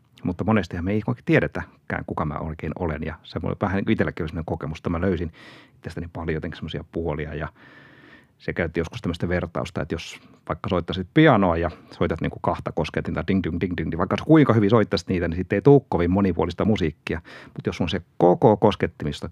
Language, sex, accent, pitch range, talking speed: Finnish, male, native, 85-105 Hz, 190 wpm